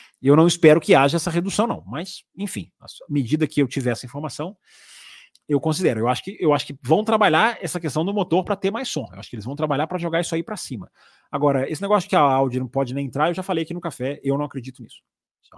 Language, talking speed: Portuguese, 260 wpm